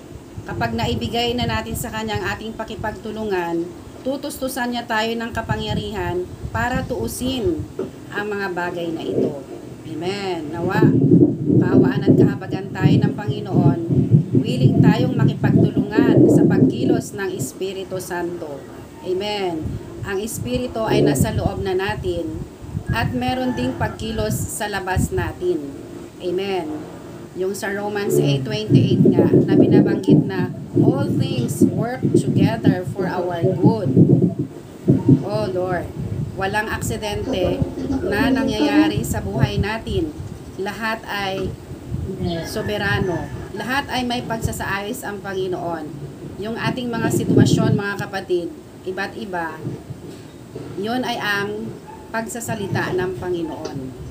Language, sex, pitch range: Filipino, female, 140-205 Hz